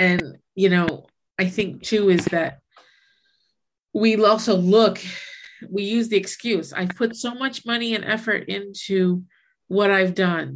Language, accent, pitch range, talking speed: English, American, 180-225 Hz, 150 wpm